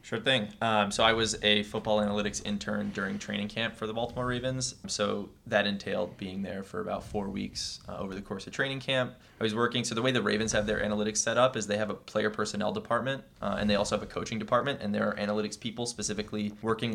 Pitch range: 105-110 Hz